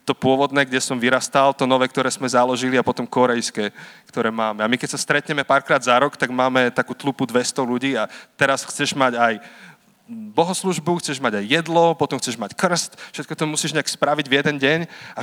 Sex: male